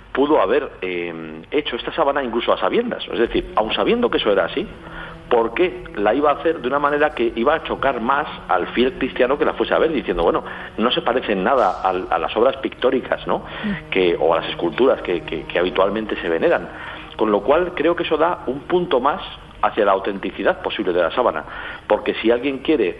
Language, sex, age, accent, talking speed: English, male, 50-69, Spanish, 215 wpm